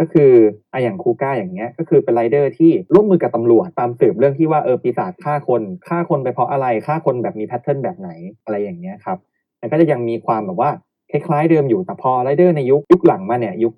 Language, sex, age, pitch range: Thai, male, 20-39, 125-180 Hz